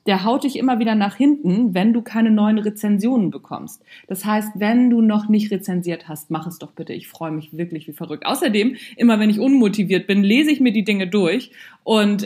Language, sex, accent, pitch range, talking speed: German, female, German, 190-250 Hz, 215 wpm